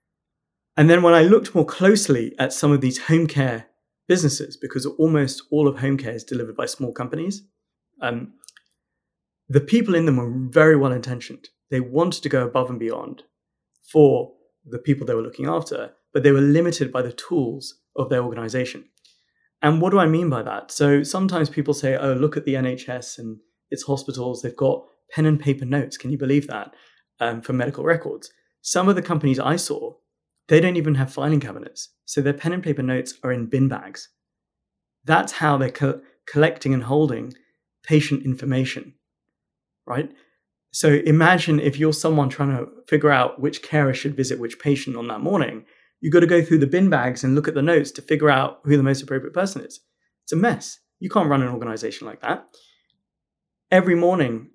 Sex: male